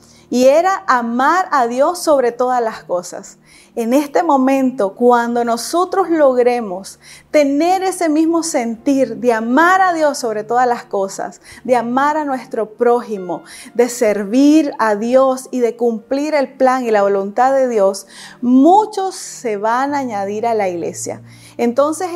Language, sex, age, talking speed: Spanish, female, 30-49, 150 wpm